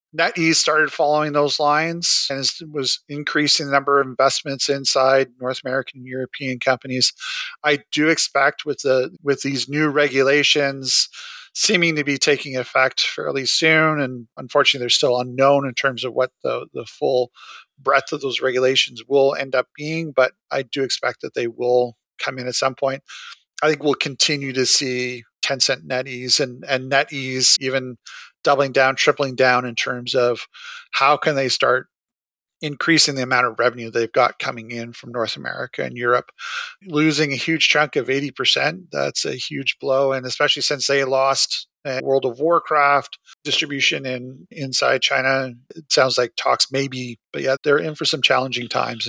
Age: 40-59